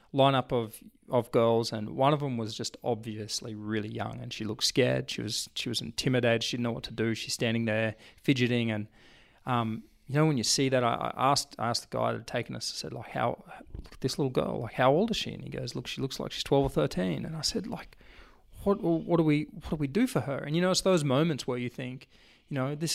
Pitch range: 115-145 Hz